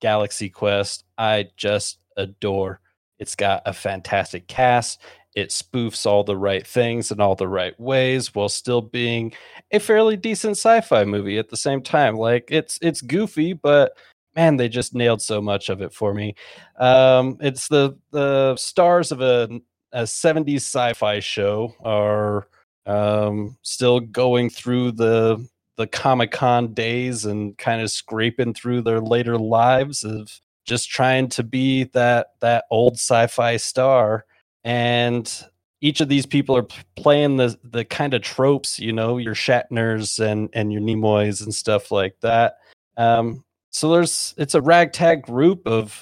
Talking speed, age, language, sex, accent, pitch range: 155 wpm, 30-49, English, male, American, 110-135 Hz